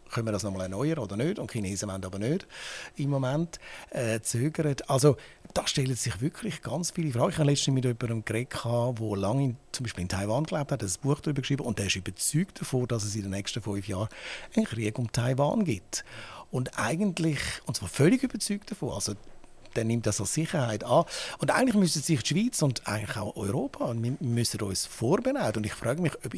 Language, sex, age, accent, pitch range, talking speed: German, male, 60-79, Austrian, 110-150 Hz, 215 wpm